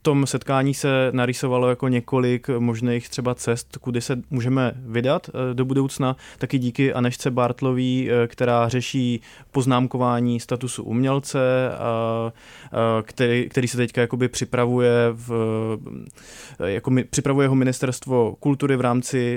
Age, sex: 20-39, male